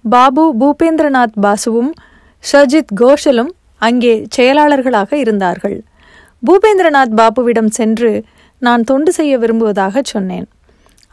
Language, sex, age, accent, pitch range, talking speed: Tamil, female, 30-49, native, 220-275 Hz, 85 wpm